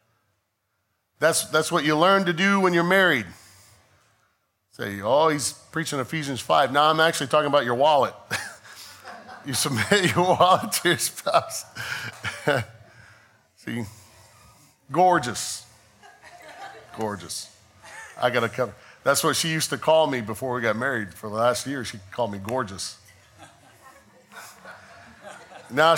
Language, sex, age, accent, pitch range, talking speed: English, male, 40-59, American, 110-160 Hz, 130 wpm